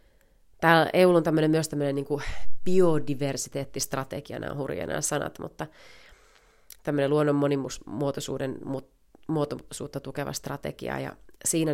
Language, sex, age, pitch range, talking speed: Finnish, female, 30-49, 135-155 Hz, 105 wpm